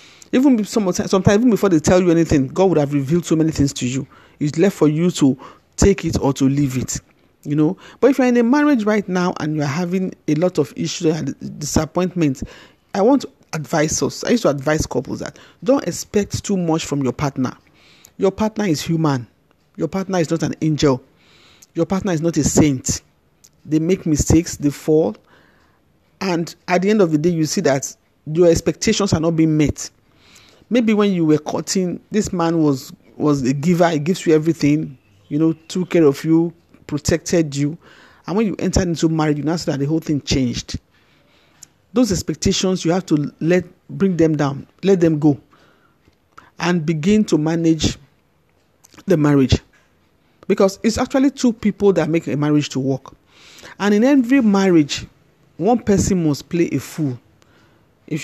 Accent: Nigerian